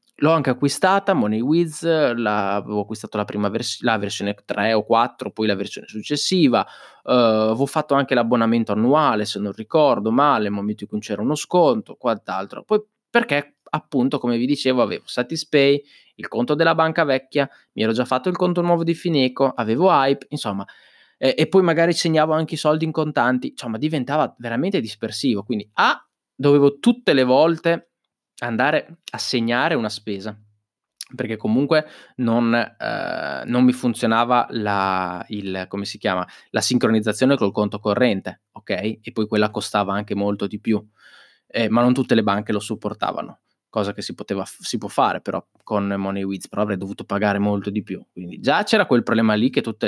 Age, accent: 20-39, native